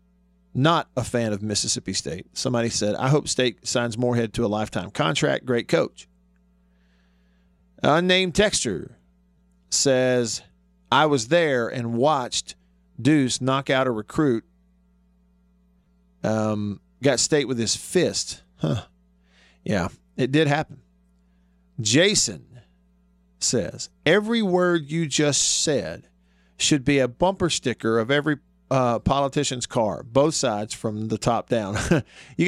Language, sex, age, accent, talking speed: English, male, 40-59, American, 125 wpm